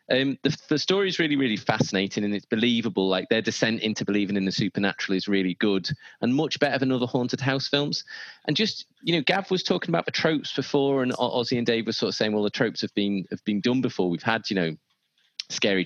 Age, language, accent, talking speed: 30-49, English, British, 235 wpm